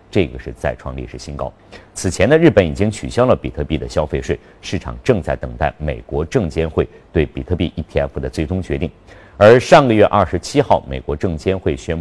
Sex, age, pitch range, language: male, 50-69, 75-105 Hz, Chinese